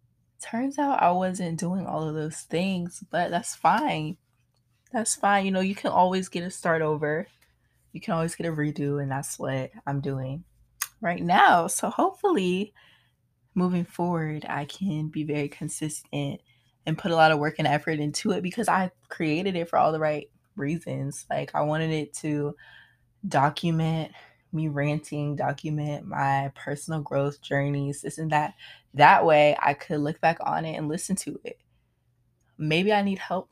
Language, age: English, 20-39